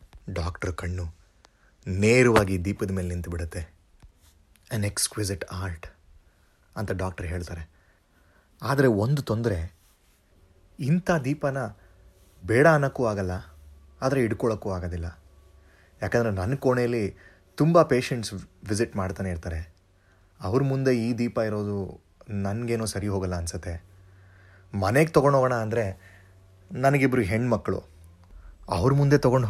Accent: native